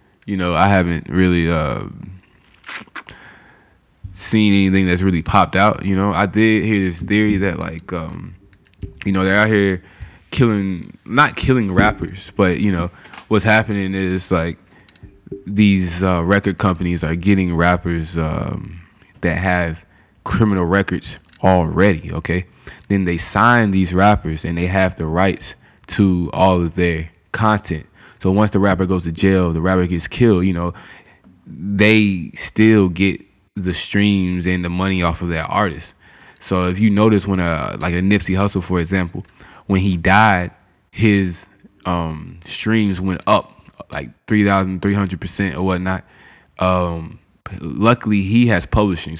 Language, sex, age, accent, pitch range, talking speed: English, male, 20-39, American, 90-100 Hz, 150 wpm